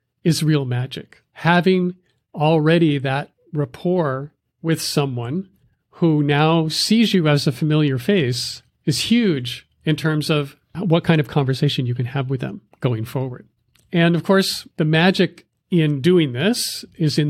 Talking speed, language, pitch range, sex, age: 150 wpm, English, 135-170 Hz, male, 50-69